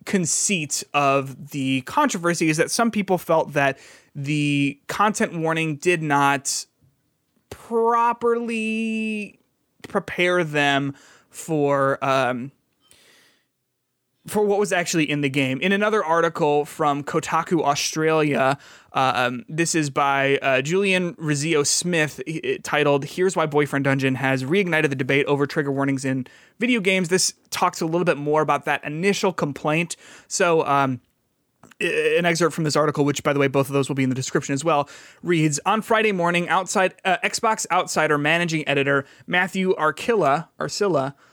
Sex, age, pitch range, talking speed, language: male, 20-39, 140-190 Hz, 150 wpm, English